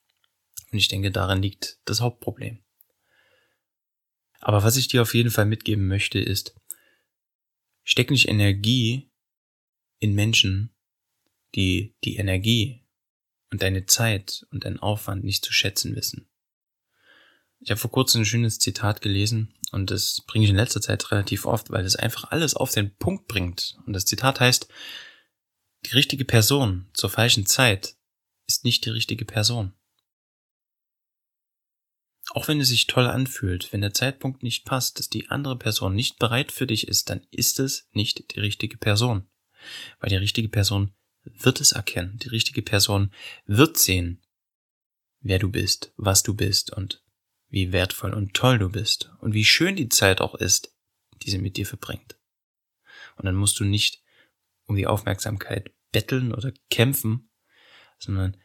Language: German